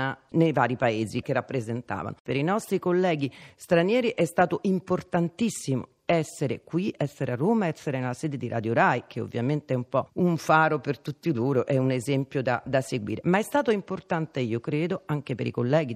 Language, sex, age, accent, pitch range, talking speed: Italian, female, 40-59, native, 130-175 Hz, 190 wpm